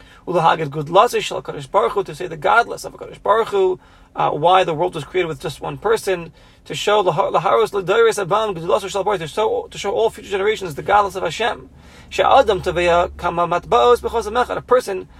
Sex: male